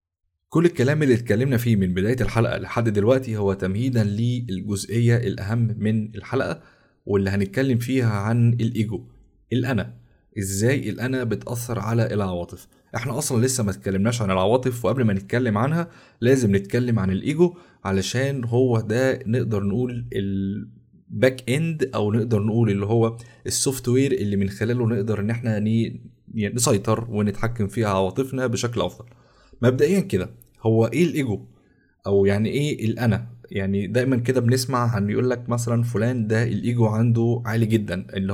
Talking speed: 145 wpm